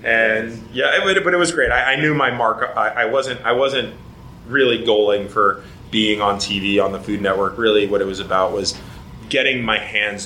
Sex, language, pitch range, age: male, English, 100-115 Hz, 30-49